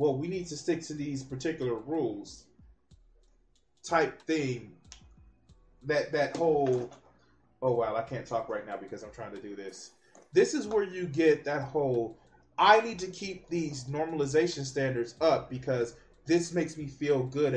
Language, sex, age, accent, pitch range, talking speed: English, male, 20-39, American, 145-220 Hz, 165 wpm